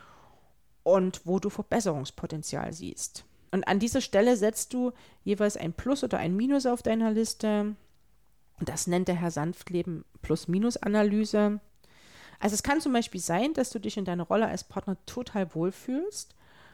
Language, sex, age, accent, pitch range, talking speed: German, female, 30-49, German, 185-215 Hz, 160 wpm